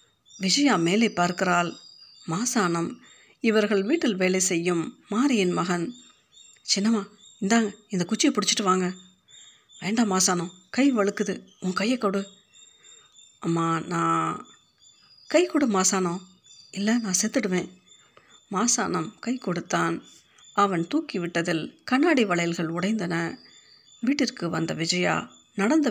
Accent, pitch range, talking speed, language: native, 175-225 Hz, 100 wpm, Tamil